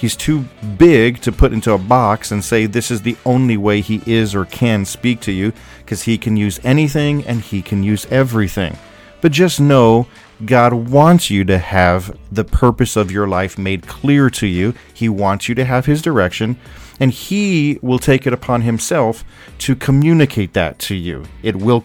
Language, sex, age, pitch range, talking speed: English, male, 40-59, 100-130 Hz, 190 wpm